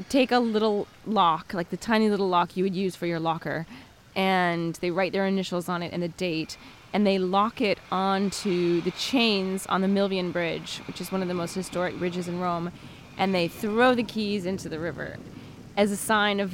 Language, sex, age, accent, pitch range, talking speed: English, female, 20-39, American, 180-215 Hz, 210 wpm